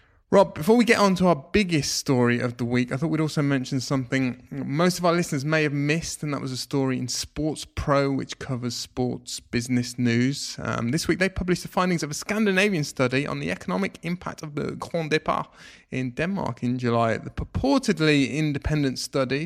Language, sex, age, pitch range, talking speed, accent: English, male, 20-39, 125-170 Hz, 200 wpm, British